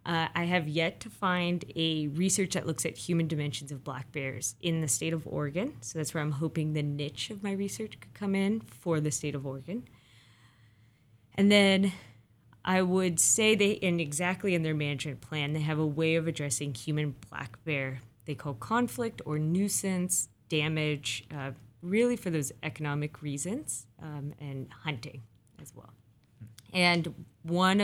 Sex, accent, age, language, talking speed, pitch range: female, American, 20-39, English, 170 wpm, 135-175 Hz